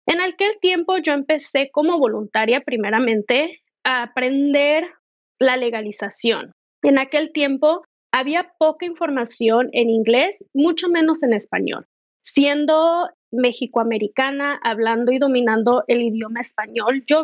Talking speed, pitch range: 115 wpm, 230-290 Hz